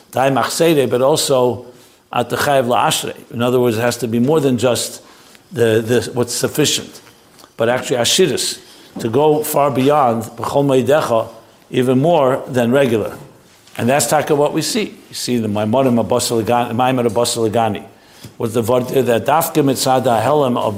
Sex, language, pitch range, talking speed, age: male, English, 120-150 Hz, 145 wpm, 60-79